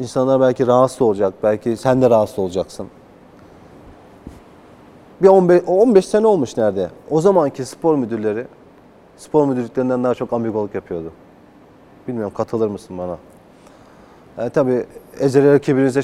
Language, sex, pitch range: Turkish, male, 130-160 Hz